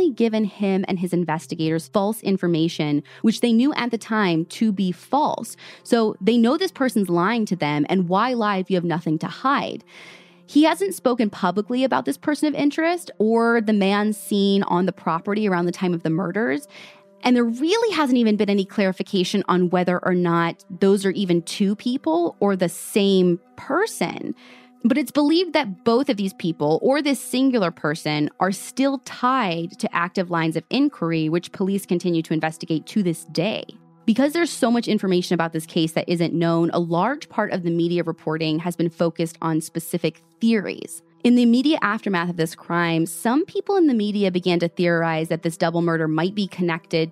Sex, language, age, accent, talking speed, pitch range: female, English, 20-39, American, 190 wpm, 170-235 Hz